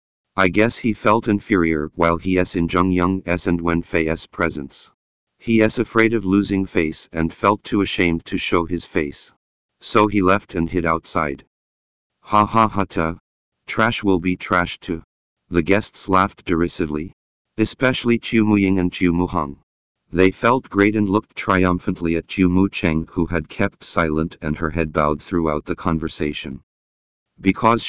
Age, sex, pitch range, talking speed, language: 50-69, male, 80-100 Hz, 170 wpm, English